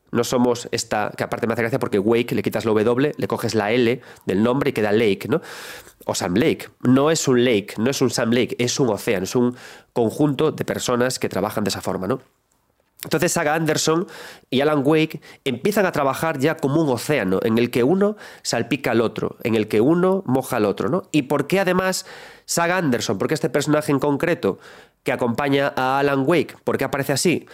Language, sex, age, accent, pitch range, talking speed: Spanish, male, 30-49, Spanish, 115-160 Hz, 215 wpm